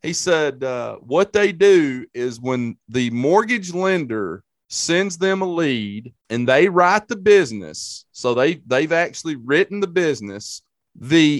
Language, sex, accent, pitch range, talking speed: English, male, American, 135-185 Hz, 140 wpm